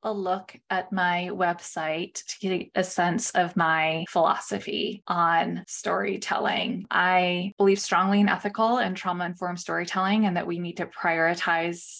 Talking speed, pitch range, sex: 140 wpm, 170-205 Hz, female